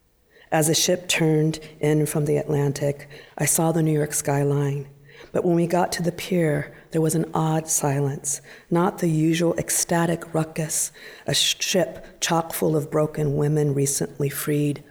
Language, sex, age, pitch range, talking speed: English, female, 50-69, 145-165 Hz, 160 wpm